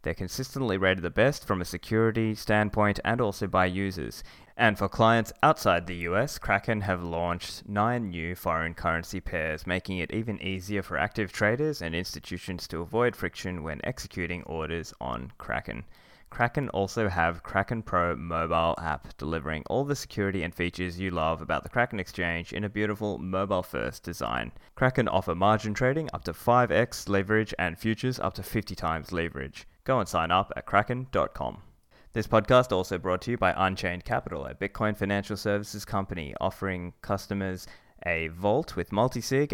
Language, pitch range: English, 90-110 Hz